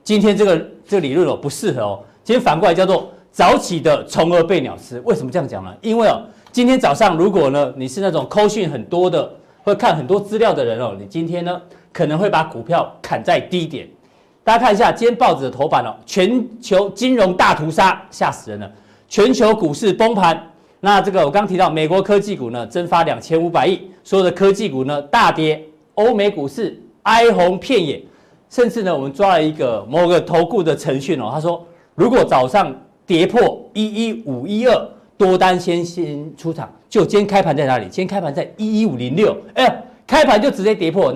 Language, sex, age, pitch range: Chinese, male, 40-59, 160-205 Hz